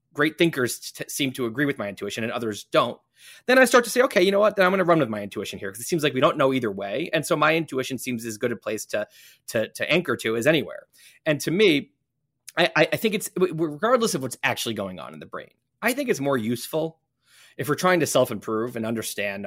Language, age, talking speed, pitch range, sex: English, 20-39, 255 wpm, 115-170 Hz, male